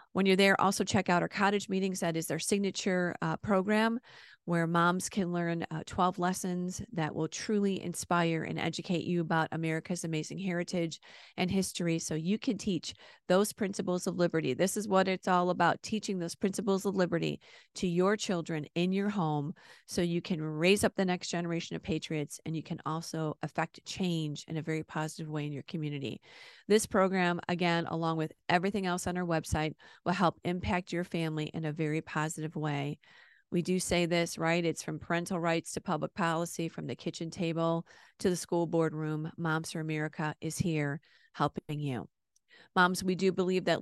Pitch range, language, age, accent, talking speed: 160-180 Hz, English, 40-59, American, 185 wpm